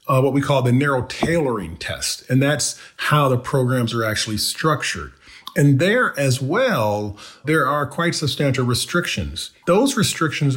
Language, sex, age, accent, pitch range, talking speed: English, male, 40-59, American, 115-145 Hz, 155 wpm